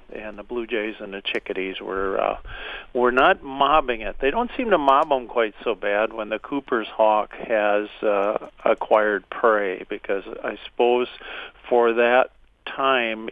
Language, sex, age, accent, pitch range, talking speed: English, male, 50-69, American, 110-130 Hz, 160 wpm